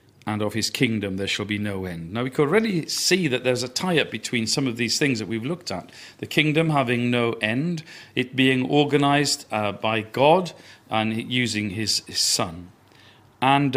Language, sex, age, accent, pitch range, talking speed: English, male, 40-59, British, 110-140 Hz, 190 wpm